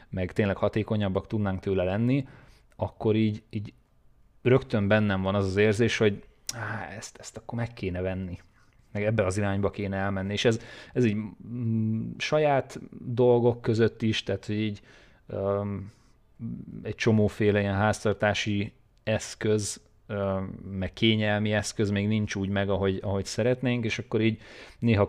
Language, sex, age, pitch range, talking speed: Hungarian, male, 30-49, 100-115 Hz, 140 wpm